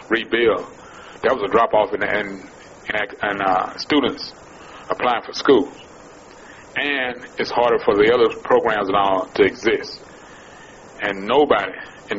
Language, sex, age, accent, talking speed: English, male, 30-49, American, 145 wpm